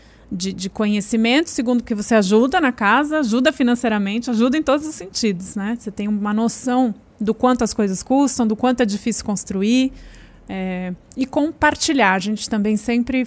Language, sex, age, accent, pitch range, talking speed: Portuguese, female, 30-49, Brazilian, 195-235 Hz, 165 wpm